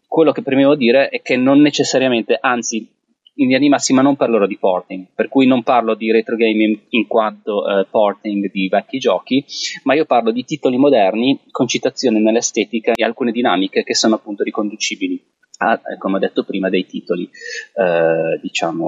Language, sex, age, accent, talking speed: Italian, male, 30-49, native, 180 wpm